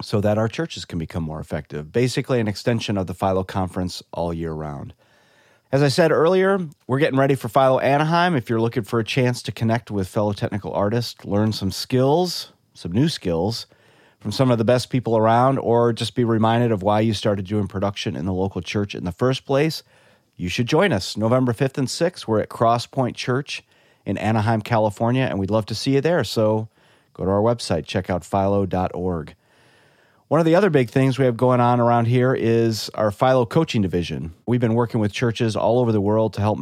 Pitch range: 100-125 Hz